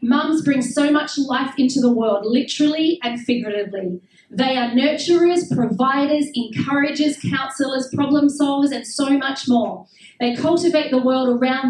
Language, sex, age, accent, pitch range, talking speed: Finnish, female, 40-59, Australian, 240-290 Hz, 145 wpm